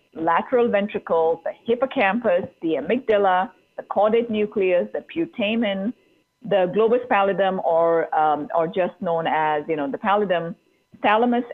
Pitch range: 170-235 Hz